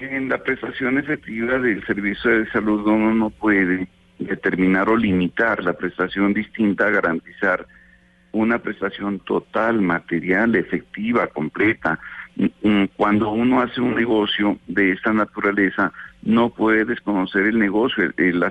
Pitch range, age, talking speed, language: 90-110 Hz, 60-79, 125 wpm, Spanish